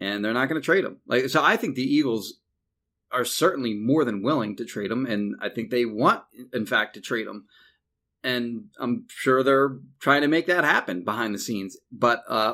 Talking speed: 215 wpm